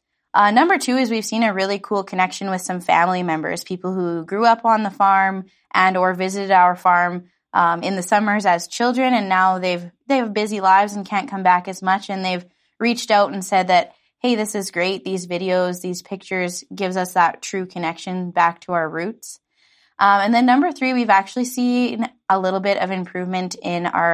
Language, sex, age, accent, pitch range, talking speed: English, female, 20-39, American, 175-200 Hz, 210 wpm